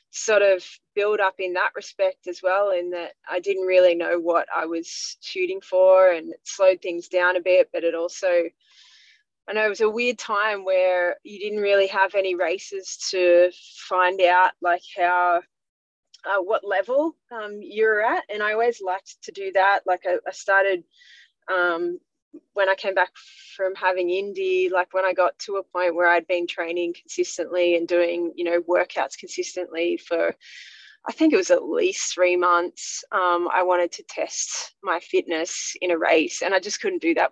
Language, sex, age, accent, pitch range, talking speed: English, female, 20-39, Australian, 180-235 Hz, 190 wpm